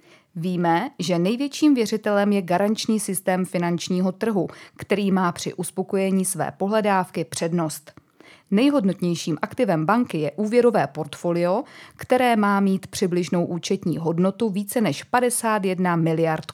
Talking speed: 115 wpm